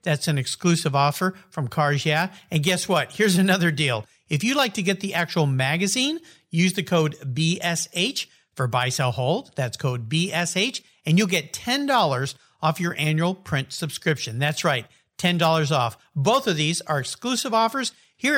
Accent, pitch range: American, 140-200 Hz